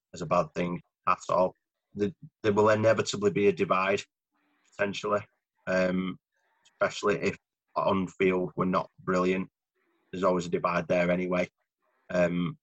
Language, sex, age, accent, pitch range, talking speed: English, male, 30-49, British, 90-105 Hz, 135 wpm